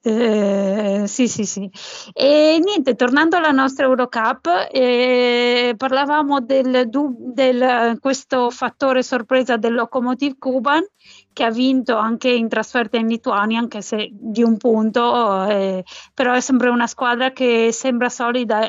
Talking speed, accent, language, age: 140 wpm, native, Italian, 30-49